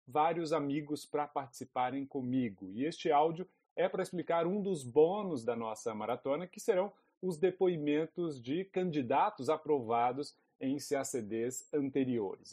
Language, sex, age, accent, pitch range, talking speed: Portuguese, male, 40-59, Brazilian, 140-195 Hz, 130 wpm